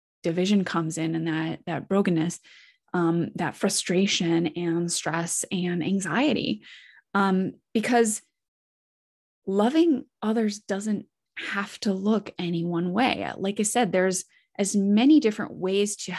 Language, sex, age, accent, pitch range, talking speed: English, female, 20-39, American, 180-240 Hz, 125 wpm